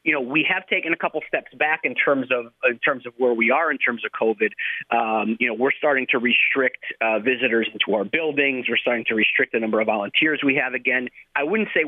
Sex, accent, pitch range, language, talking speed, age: male, American, 120-150 Hz, English, 245 wpm, 40-59